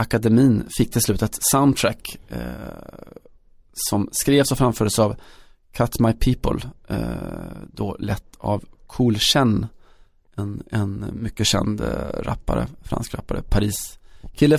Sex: male